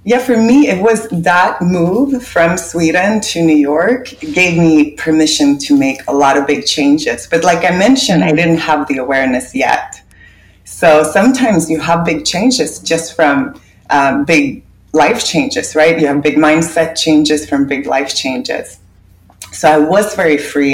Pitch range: 145-180 Hz